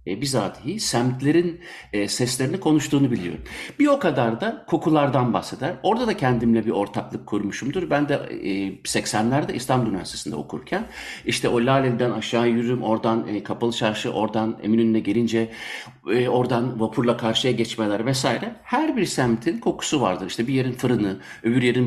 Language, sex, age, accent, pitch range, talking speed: Turkish, male, 60-79, native, 110-150 Hz, 150 wpm